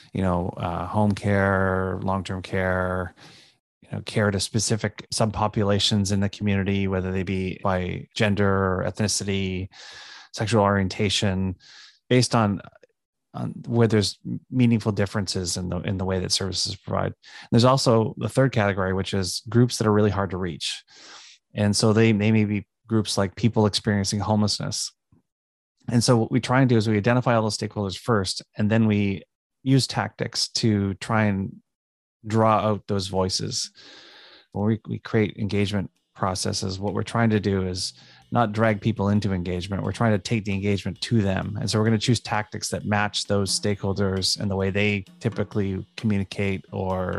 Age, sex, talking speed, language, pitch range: 30-49, male, 170 wpm, English, 95-110 Hz